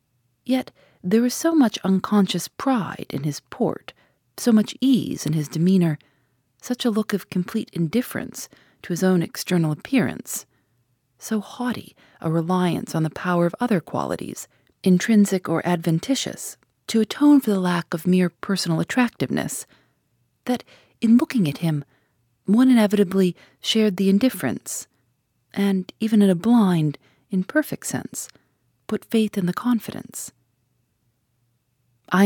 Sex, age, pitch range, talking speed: female, 40-59, 145-215 Hz, 135 wpm